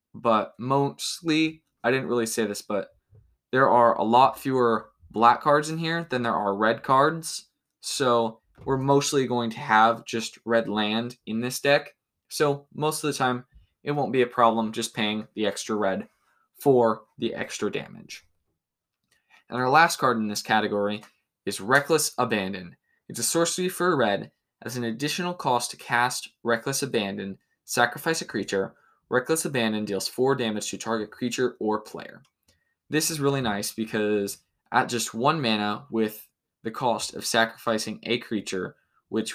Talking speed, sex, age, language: 165 wpm, male, 20-39, English